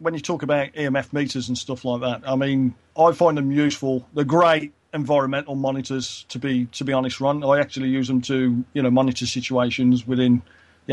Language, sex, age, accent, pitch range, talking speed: English, male, 40-59, British, 125-145 Hz, 205 wpm